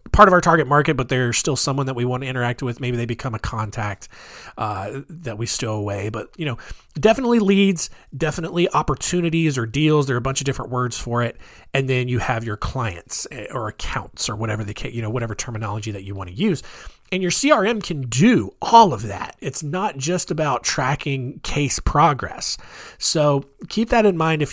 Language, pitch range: English, 120-165 Hz